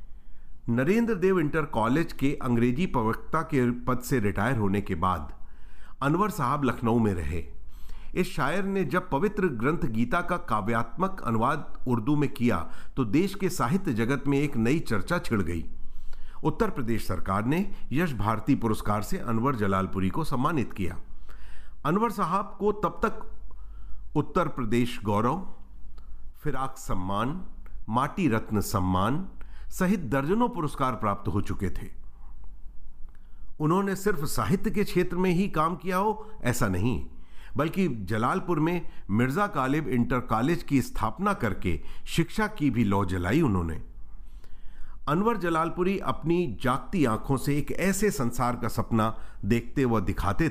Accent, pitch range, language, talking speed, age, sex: native, 100-165 Hz, Hindi, 140 wpm, 50-69, male